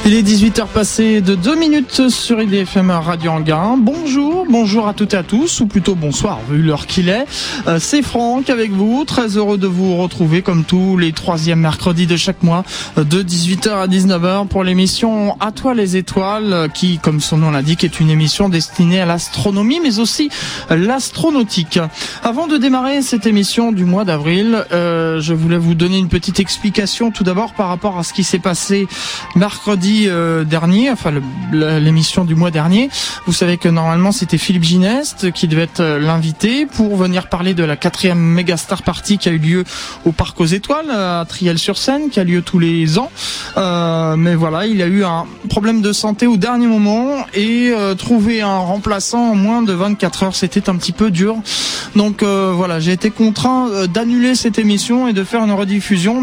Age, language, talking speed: 20-39, French, 190 wpm